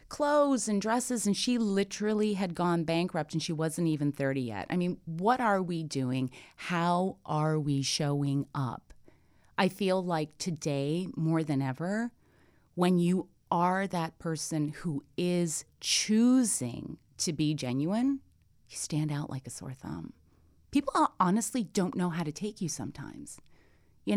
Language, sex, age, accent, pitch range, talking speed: English, female, 30-49, American, 145-195 Hz, 150 wpm